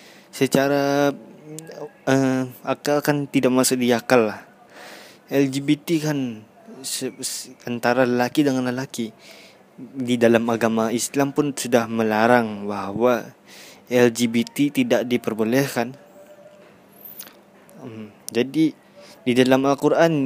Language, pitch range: Indonesian, 115-140 Hz